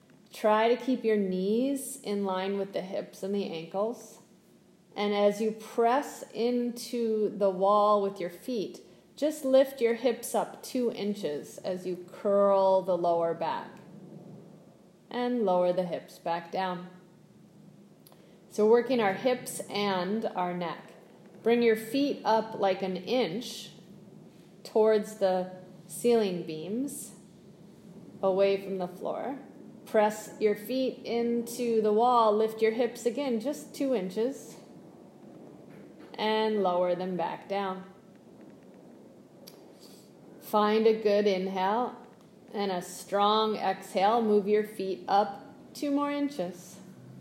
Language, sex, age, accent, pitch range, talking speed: English, female, 30-49, American, 190-235 Hz, 125 wpm